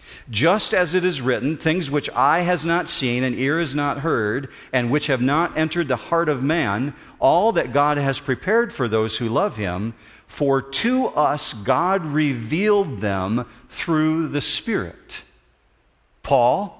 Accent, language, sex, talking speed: American, English, male, 160 wpm